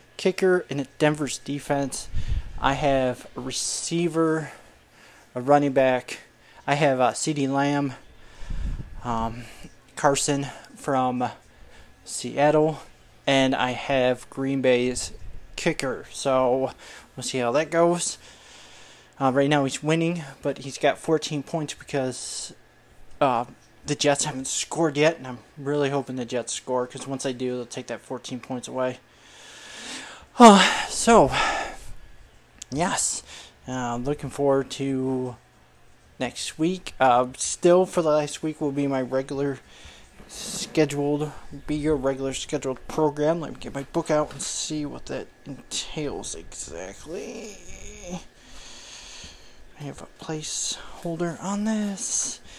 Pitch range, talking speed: 130-150 Hz, 125 wpm